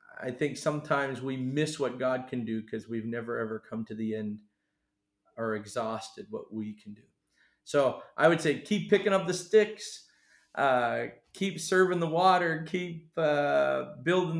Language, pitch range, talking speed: English, 115-135 Hz, 165 wpm